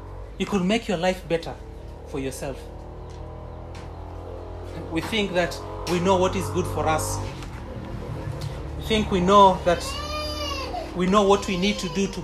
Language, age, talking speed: English, 30-49, 150 wpm